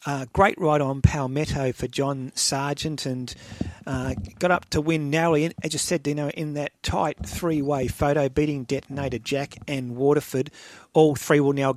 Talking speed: 180 wpm